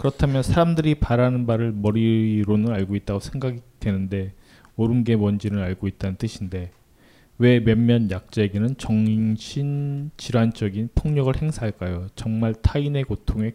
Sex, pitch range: male, 105-140 Hz